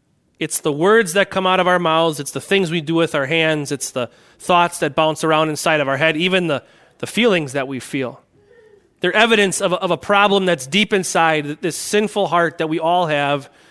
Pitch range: 160-215 Hz